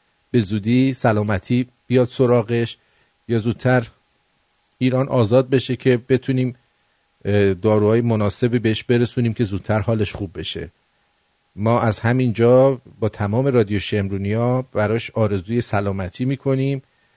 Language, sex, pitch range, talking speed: English, male, 110-150 Hz, 115 wpm